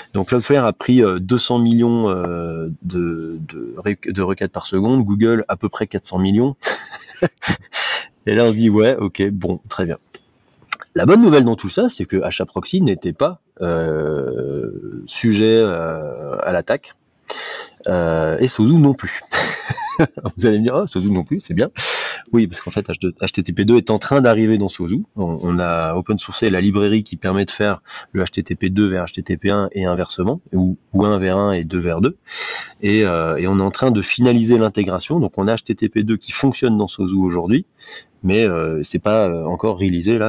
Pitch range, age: 90-115 Hz, 30-49